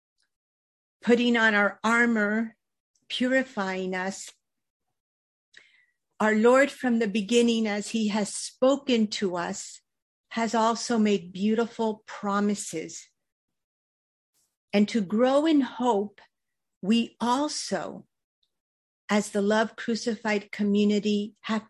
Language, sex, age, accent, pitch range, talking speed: English, female, 50-69, American, 200-240 Hz, 95 wpm